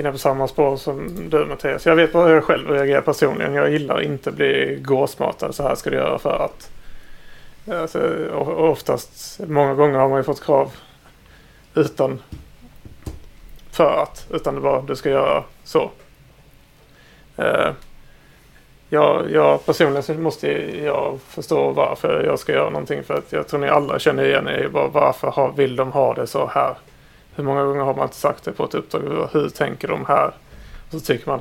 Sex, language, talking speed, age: male, Swedish, 180 wpm, 30-49